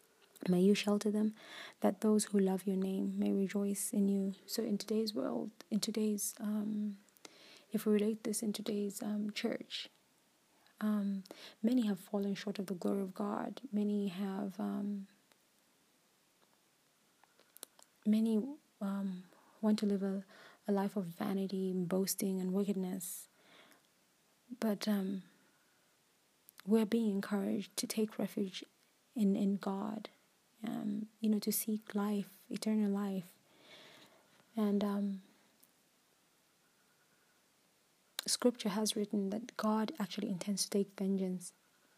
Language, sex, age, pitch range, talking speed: English, female, 20-39, 200-215 Hz, 125 wpm